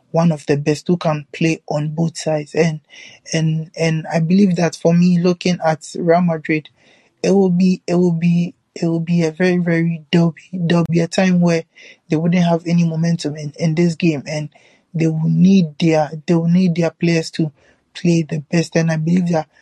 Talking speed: 210 wpm